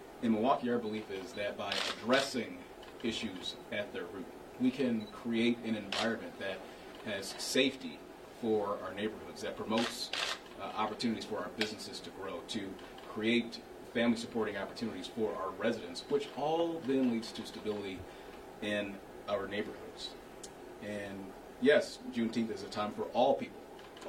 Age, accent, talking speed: 40-59, American, 140 wpm